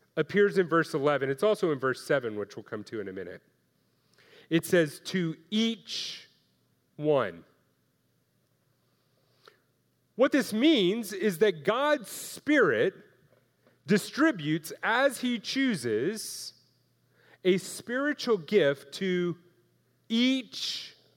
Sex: male